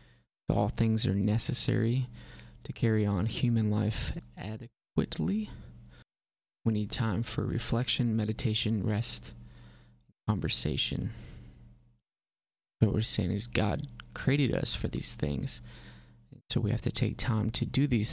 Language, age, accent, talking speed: English, 20-39, American, 125 wpm